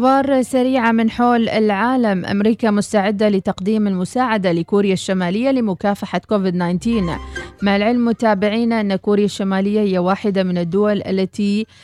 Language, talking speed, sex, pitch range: Arabic, 115 wpm, female, 185-225 Hz